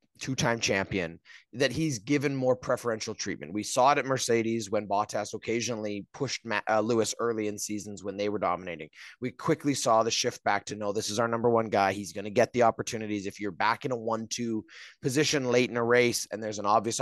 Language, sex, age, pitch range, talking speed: English, male, 30-49, 105-130 Hz, 220 wpm